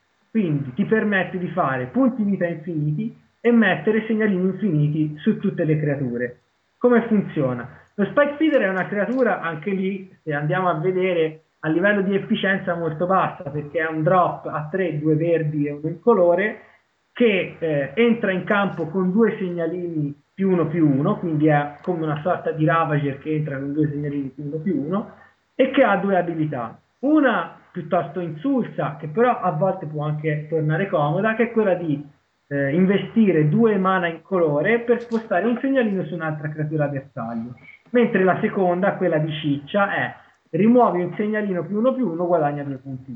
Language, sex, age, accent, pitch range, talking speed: Italian, male, 20-39, native, 155-200 Hz, 175 wpm